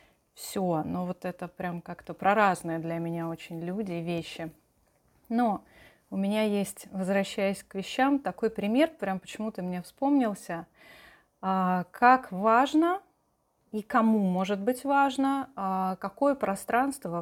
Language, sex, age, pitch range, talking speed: Russian, female, 30-49, 180-235 Hz, 125 wpm